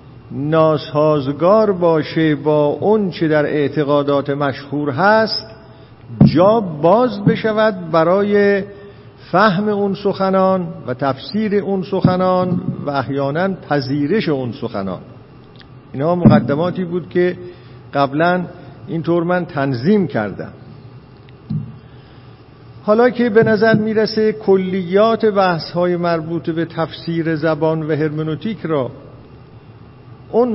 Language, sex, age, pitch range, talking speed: Persian, male, 50-69, 135-190 Hz, 95 wpm